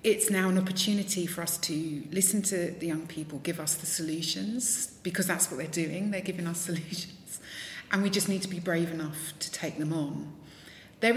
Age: 30-49